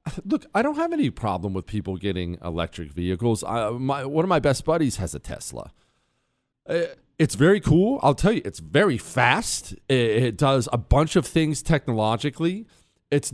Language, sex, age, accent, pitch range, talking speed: English, male, 40-59, American, 105-170 Hz, 160 wpm